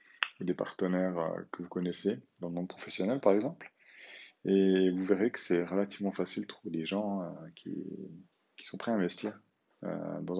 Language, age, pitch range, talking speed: French, 30-49, 90-95 Hz, 165 wpm